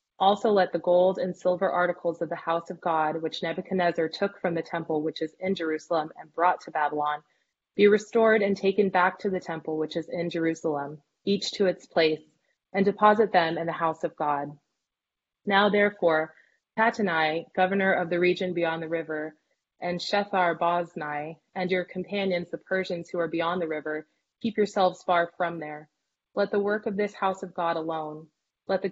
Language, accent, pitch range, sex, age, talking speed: English, American, 165-190 Hz, female, 20-39, 185 wpm